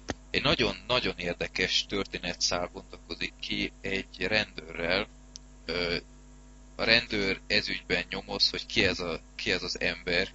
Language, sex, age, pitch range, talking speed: Hungarian, male, 30-49, 85-115 Hz, 115 wpm